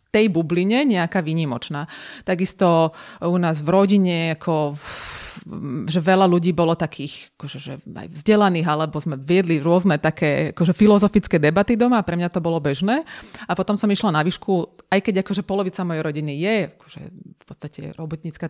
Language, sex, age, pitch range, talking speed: Slovak, female, 30-49, 165-205 Hz, 165 wpm